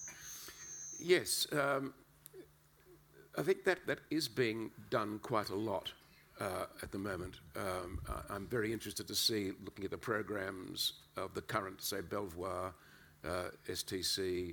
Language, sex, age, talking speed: English, male, 50-69, 135 wpm